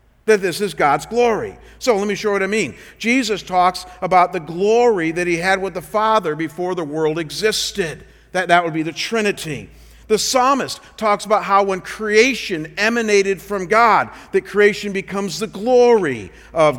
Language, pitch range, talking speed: English, 190-230 Hz, 180 wpm